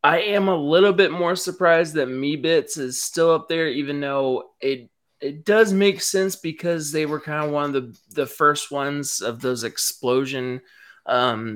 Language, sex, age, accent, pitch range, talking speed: English, male, 20-39, American, 120-170 Hz, 180 wpm